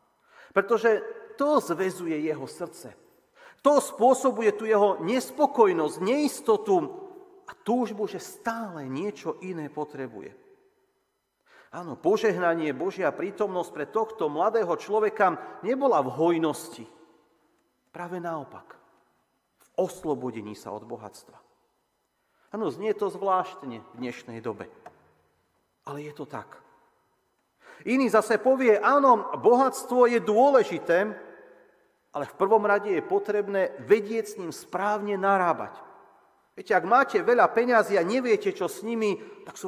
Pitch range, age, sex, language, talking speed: 160-270 Hz, 40-59, male, Slovak, 115 wpm